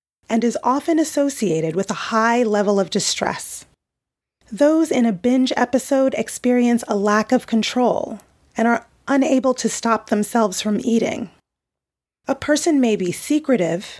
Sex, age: female, 30-49